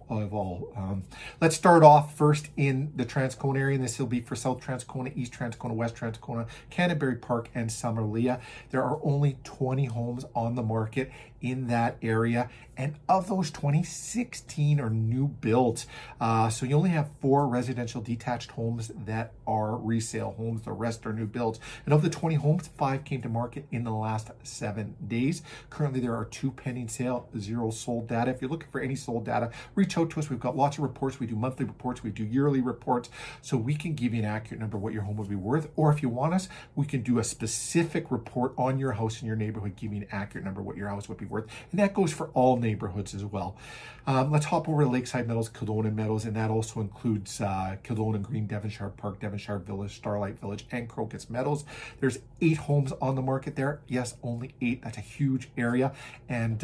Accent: American